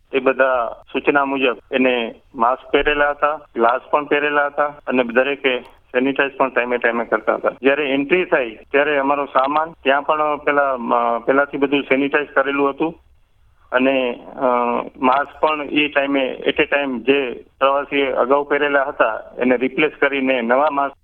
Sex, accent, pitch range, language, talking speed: male, native, 130-150 Hz, Gujarati, 90 wpm